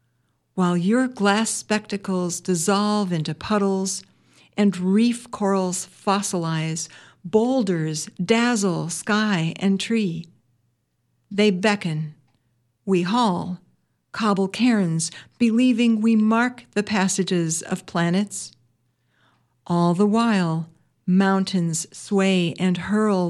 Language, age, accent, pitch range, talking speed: English, 60-79, American, 165-215 Hz, 95 wpm